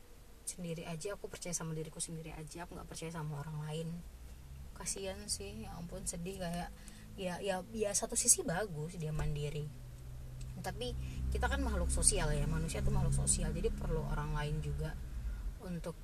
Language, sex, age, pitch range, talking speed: Indonesian, female, 20-39, 145-175 Hz, 170 wpm